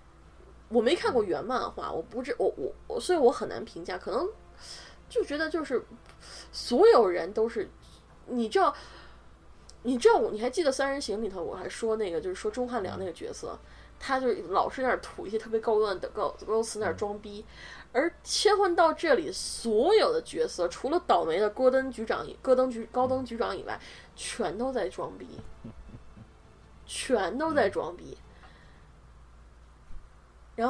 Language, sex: Chinese, female